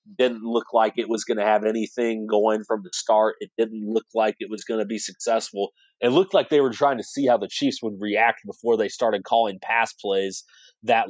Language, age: English, 30-49